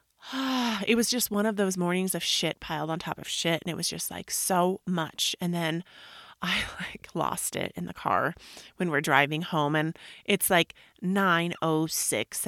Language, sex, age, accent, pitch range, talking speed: English, female, 30-49, American, 170-215 Hz, 190 wpm